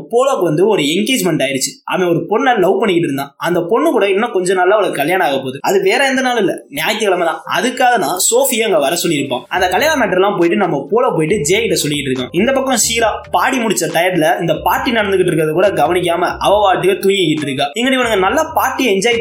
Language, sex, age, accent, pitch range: Tamil, male, 20-39, native, 170-250 Hz